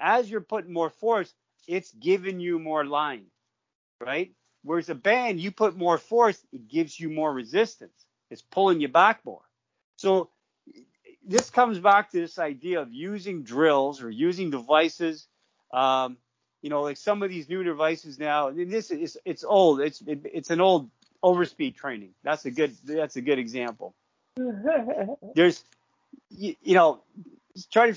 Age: 40-59